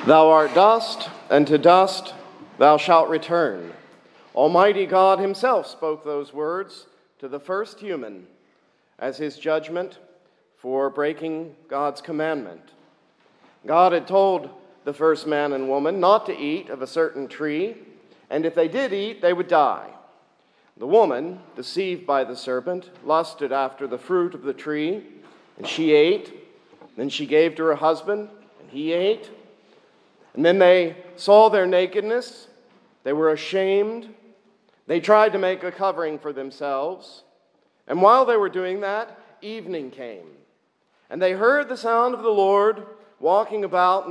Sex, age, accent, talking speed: male, 50-69, American, 150 wpm